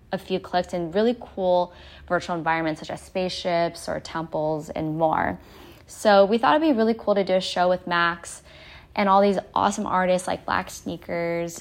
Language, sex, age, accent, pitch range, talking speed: English, female, 10-29, American, 170-200 Hz, 185 wpm